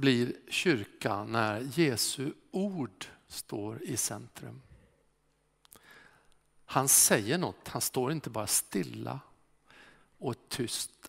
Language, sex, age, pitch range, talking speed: Swedish, male, 50-69, 115-160 Hz, 95 wpm